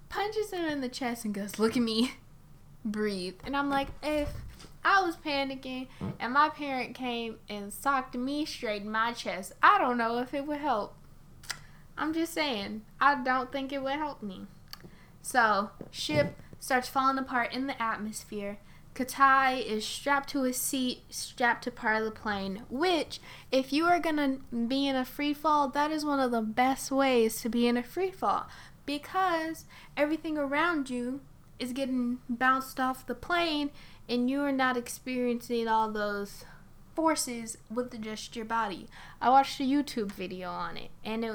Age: 10-29